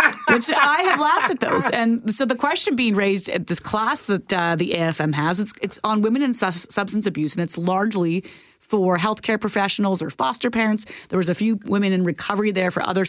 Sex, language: female, English